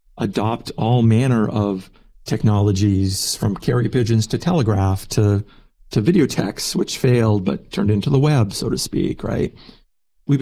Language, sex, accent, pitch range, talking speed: English, male, American, 105-130 Hz, 150 wpm